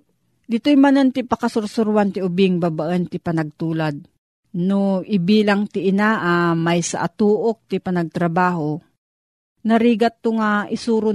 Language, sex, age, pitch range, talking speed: Filipino, female, 40-59, 175-210 Hz, 130 wpm